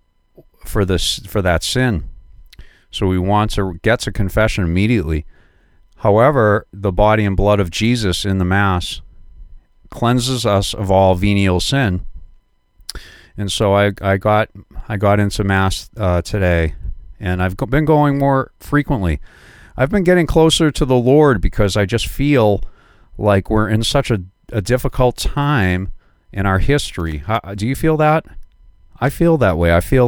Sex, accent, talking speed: male, American, 160 wpm